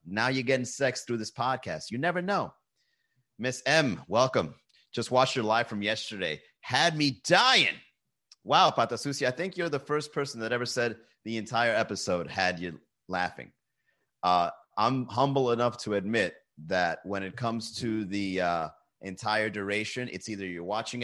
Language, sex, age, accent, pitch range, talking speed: English, male, 30-49, American, 95-125 Hz, 165 wpm